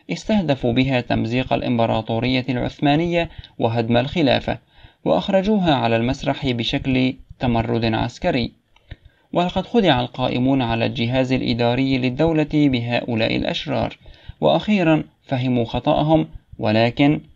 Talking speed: 90 wpm